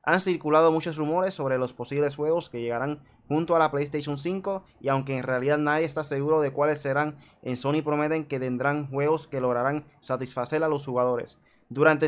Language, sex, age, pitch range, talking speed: Spanish, male, 20-39, 135-160 Hz, 190 wpm